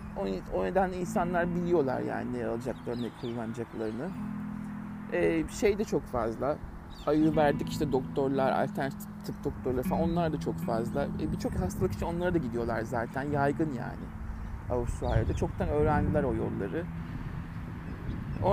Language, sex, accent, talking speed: Turkish, male, native, 135 wpm